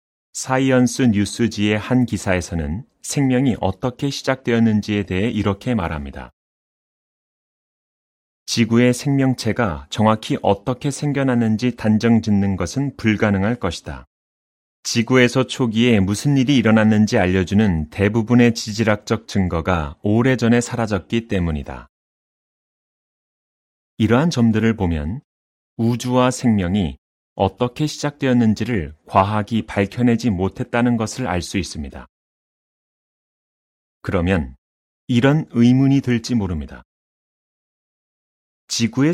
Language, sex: Korean, male